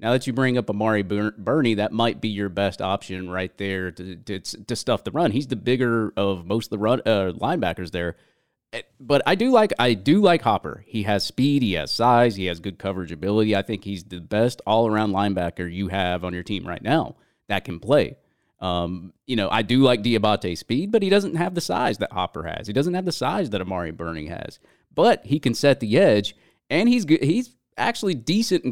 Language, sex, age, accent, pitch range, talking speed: English, male, 30-49, American, 95-135 Hz, 225 wpm